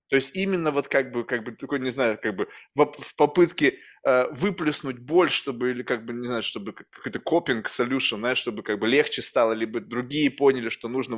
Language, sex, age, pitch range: Russian, male, 20-39, 130-190 Hz